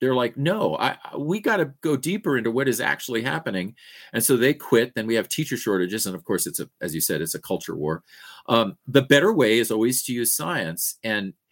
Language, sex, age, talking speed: English, male, 40-59, 235 wpm